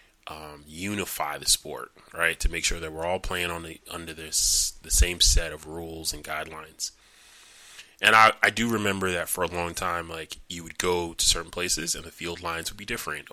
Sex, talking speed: male, 210 wpm